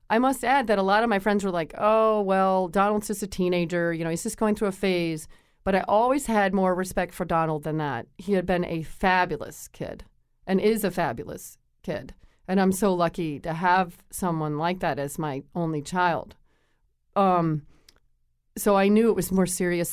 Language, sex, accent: English, female, American